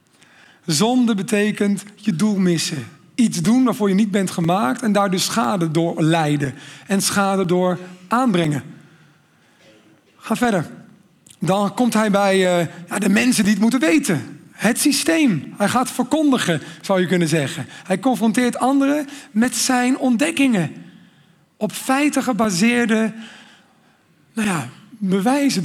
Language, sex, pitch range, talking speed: Dutch, male, 180-235 Hz, 125 wpm